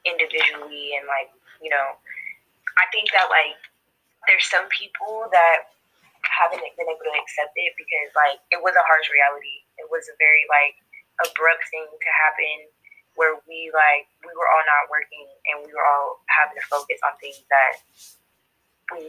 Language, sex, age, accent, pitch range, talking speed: English, female, 20-39, American, 150-185 Hz, 170 wpm